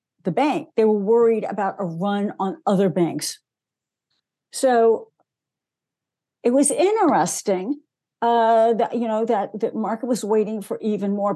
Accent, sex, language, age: American, female, English, 60-79